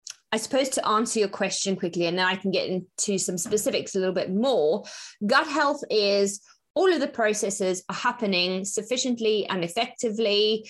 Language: English